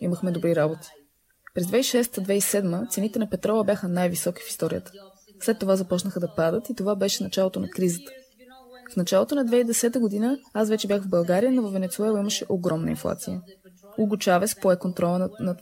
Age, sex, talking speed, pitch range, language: 20-39, female, 165 wpm, 180-225 Hz, Bulgarian